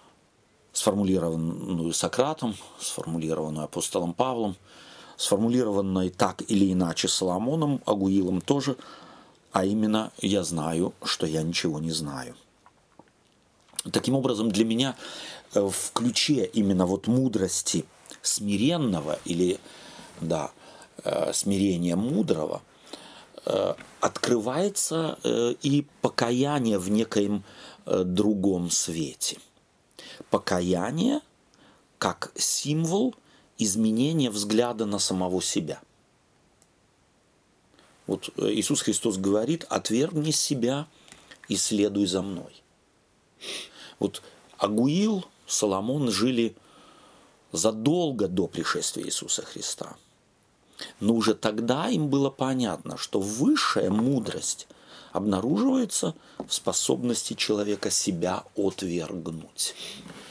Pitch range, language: 95-135 Hz, Russian